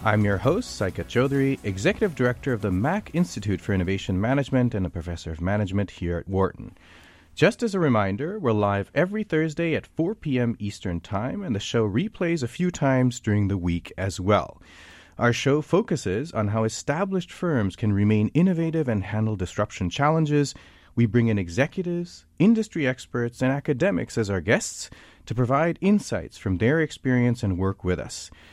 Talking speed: 175 wpm